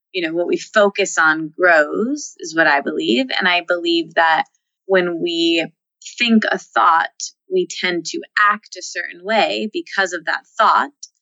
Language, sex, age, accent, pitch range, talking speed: English, female, 20-39, American, 170-240 Hz, 165 wpm